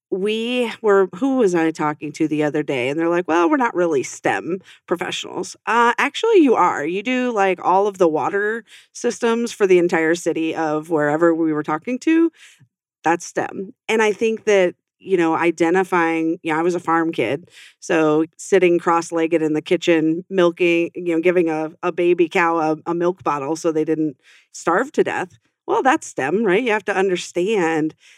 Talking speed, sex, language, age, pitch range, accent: 185 wpm, female, English, 40-59, 165-210 Hz, American